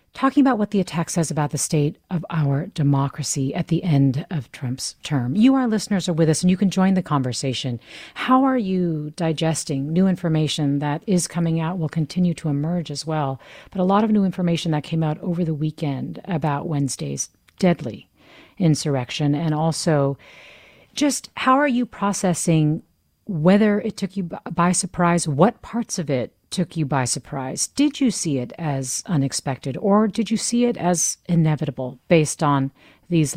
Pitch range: 140-180 Hz